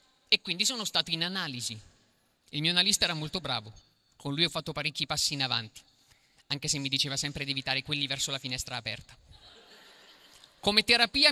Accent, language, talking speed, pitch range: native, Italian, 180 wpm, 145-210 Hz